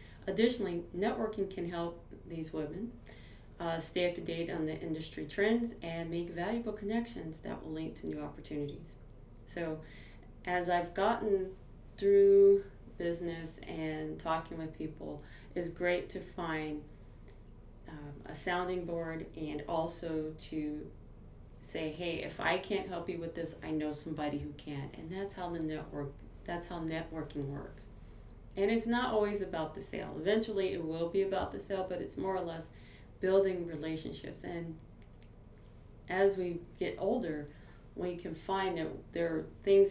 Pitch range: 145-185 Hz